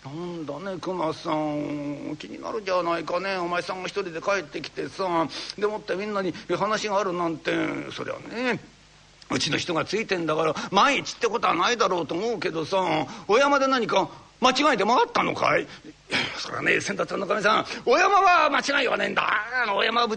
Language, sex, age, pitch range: Japanese, male, 60-79, 190-255 Hz